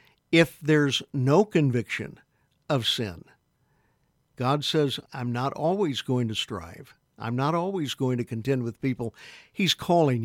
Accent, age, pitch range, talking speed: American, 60-79, 120-145 Hz, 140 wpm